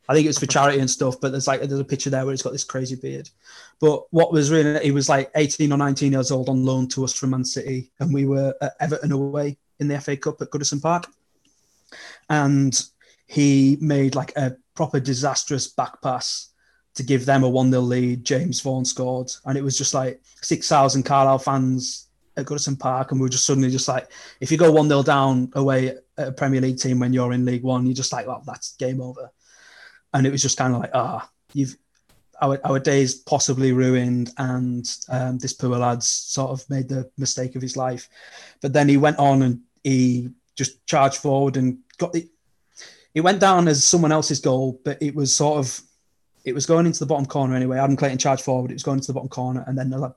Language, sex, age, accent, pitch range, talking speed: English, male, 20-39, British, 130-145 Hz, 225 wpm